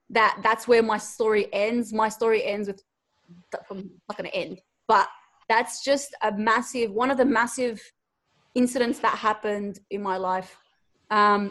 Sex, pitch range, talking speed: female, 210-250 Hz, 155 wpm